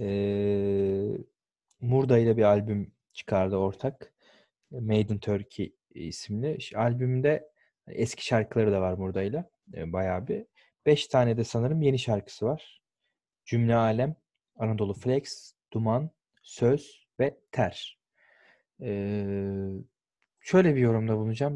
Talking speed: 105 wpm